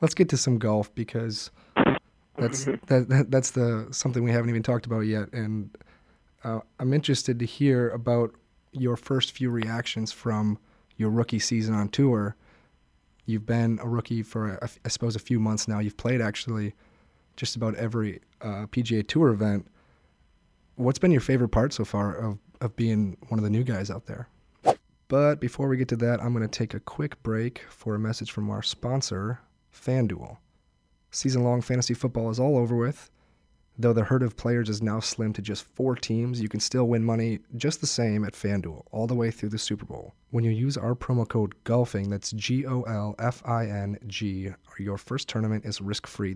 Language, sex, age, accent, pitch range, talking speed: English, male, 30-49, American, 105-120 Hz, 185 wpm